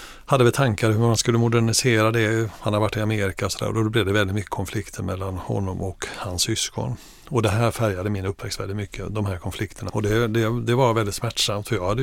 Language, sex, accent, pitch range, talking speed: English, male, Swedish, 95-115 Hz, 245 wpm